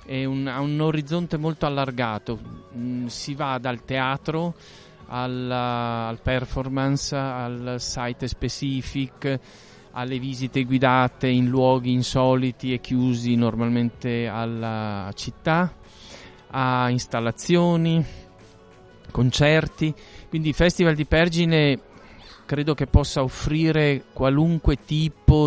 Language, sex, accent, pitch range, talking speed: Italian, male, native, 115-140 Hz, 90 wpm